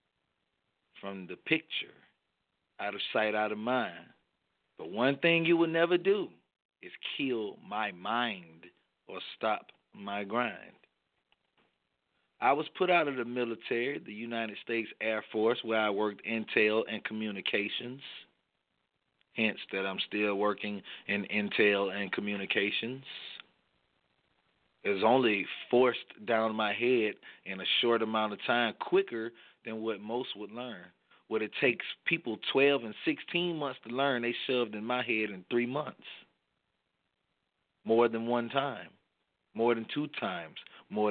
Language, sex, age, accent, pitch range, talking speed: English, male, 40-59, American, 105-125 Hz, 140 wpm